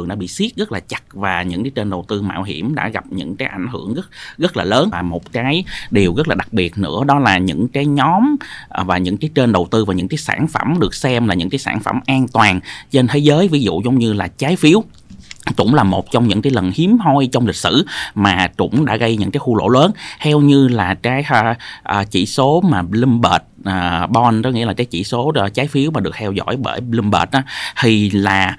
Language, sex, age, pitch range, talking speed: Vietnamese, male, 20-39, 95-140 Hz, 250 wpm